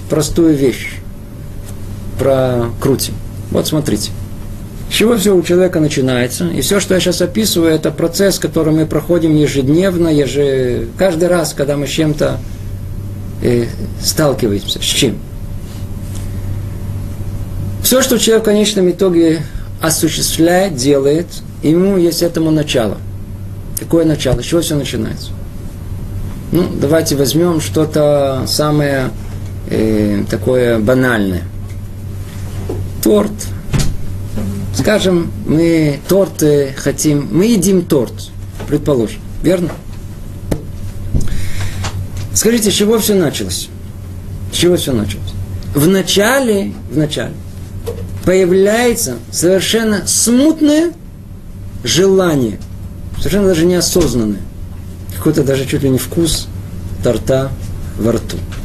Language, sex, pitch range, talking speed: Russian, male, 100-160 Hz, 100 wpm